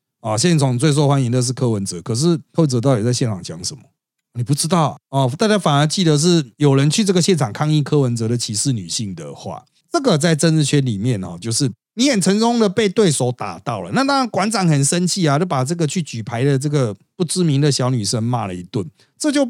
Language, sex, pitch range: Chinese, male, 120-165 Hz